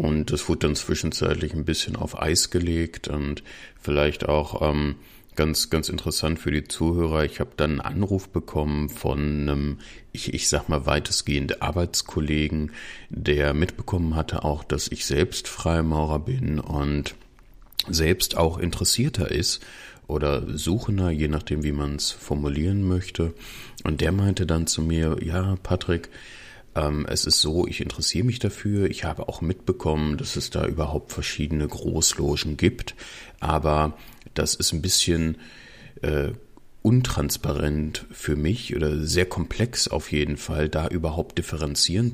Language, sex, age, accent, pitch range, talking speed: German, male, 30-49, German, 75-90 Hz, 145 wpm